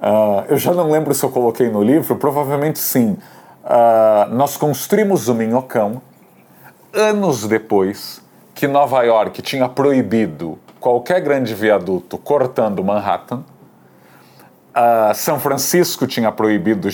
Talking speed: 110 wpm